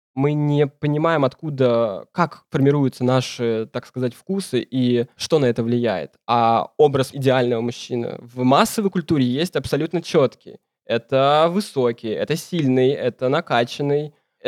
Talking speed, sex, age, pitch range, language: 130 wpm, male, 20-39, 125-160 Hz, Russian